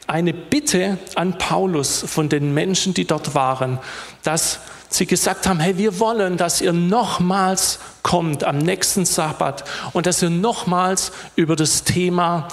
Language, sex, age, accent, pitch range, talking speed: German, male, 40-59, German, 155-195 Hz, 150 wpm